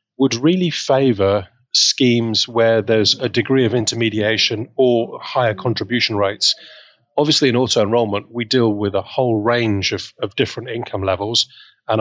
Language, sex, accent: English, male, British